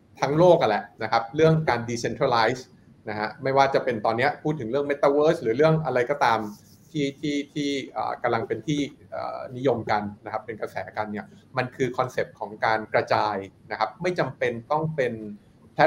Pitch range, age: 110-145 Hz, 20-39